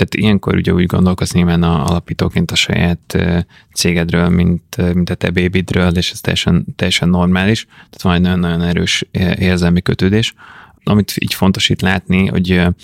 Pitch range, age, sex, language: 90-100 Hz, 20-39, male, Hungarian